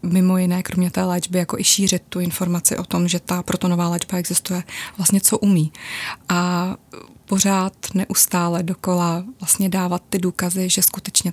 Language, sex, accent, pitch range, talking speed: Czech, female, native, 180-195 Hz, 160 wpm